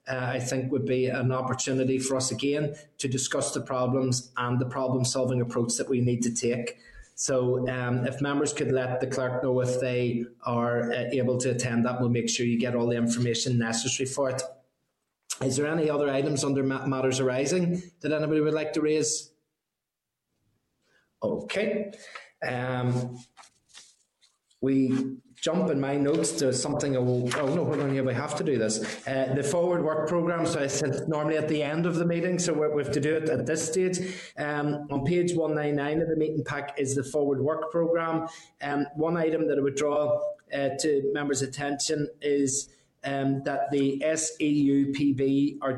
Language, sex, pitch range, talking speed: English, male, 130-150 Hz, 185 wpm